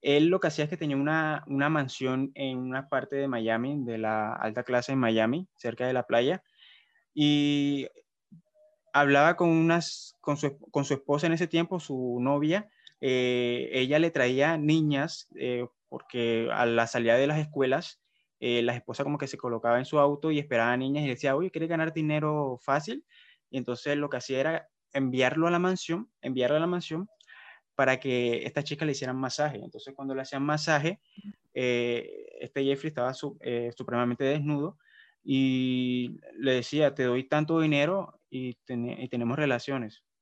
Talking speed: 180 wpm